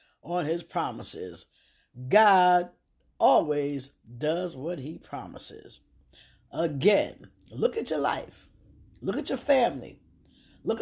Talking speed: 105 wpm